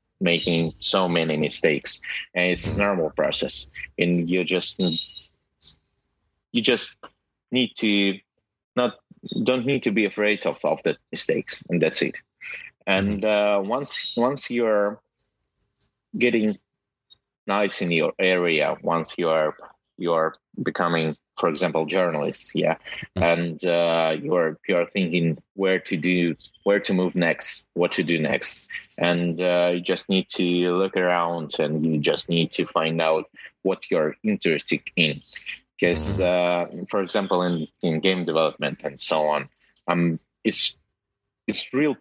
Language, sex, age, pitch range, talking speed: English, male, 30-49, 80-100 Hz, 140 wpm